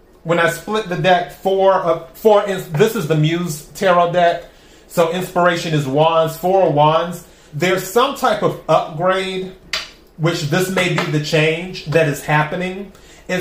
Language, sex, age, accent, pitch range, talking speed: English, male, 30-49, American, 160-190 Hz, 160 wpm